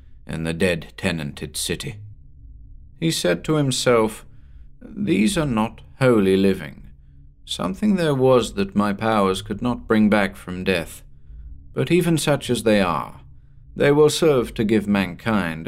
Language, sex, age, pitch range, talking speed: English, male, 50-69, 80-115 Hz, 140 wpm